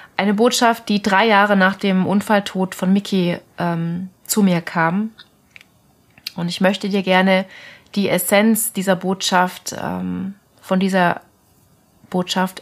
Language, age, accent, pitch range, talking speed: German, 30-49, German, 180-200 Hz, 130 wpm